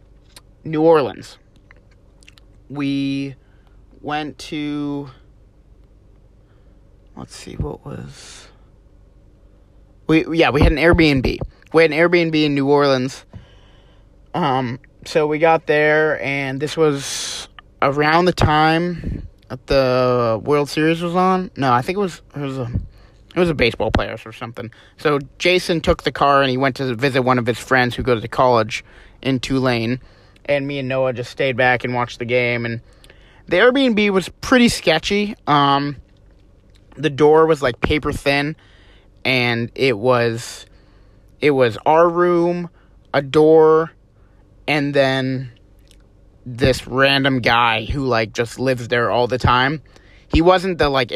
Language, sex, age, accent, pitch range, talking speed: English, male, 30-49, American, 105-150 Hz, 145 wpm